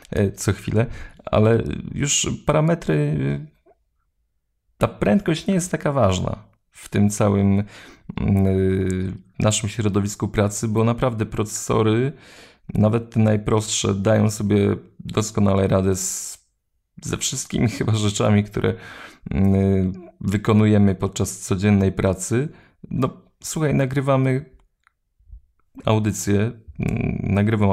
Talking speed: 90 wpm